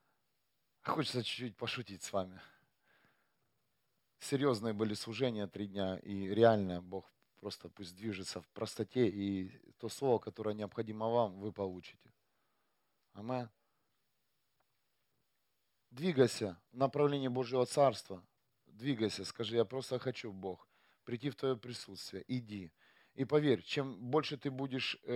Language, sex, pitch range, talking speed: Russian, male, 100-135 Hz, 120 wpm